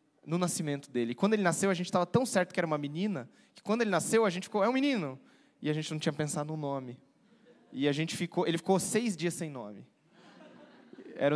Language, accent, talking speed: Portuguese, Brazilian, 245 wpm